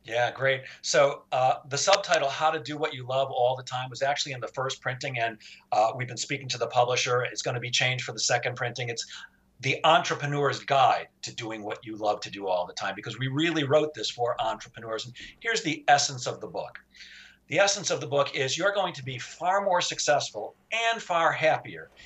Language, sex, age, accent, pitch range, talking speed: English, male, 50-69, American, 125-175 Hz, 225 wpm